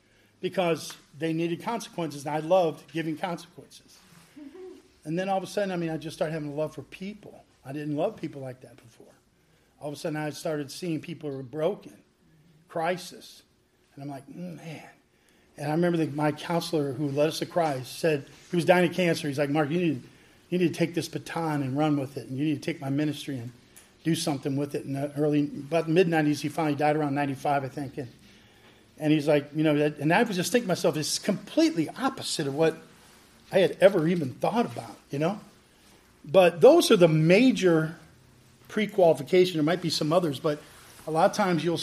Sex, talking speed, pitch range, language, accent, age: male, 210 wpm, 150-175 Hz, English, American, 50-69